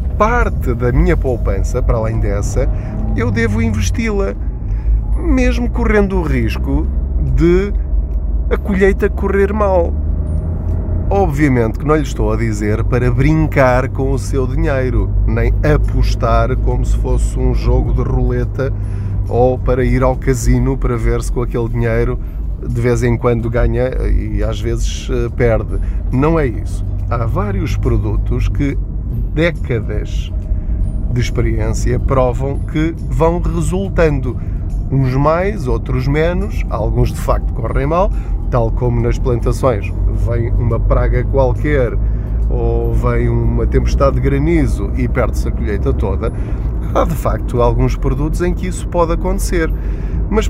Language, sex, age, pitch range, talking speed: Portuguese, male, 20-39, 95-125 Hz, 135 wpm